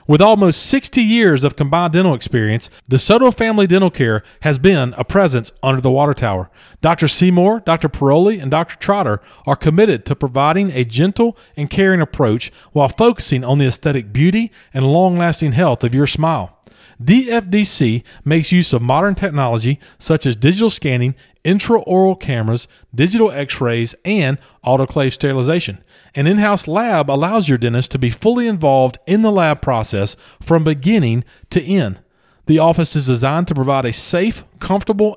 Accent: American